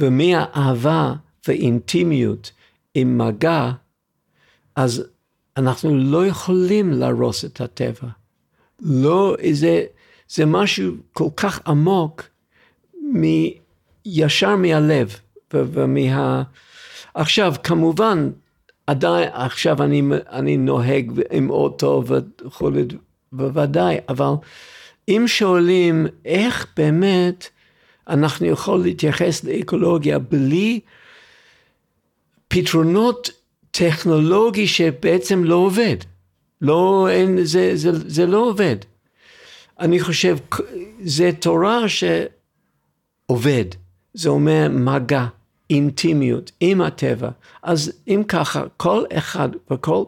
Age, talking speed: 50-69, 85 wpm